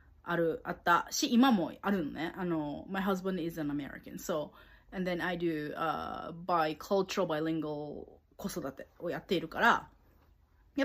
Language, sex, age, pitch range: Japanese, female, 20-39, 165-250 Hz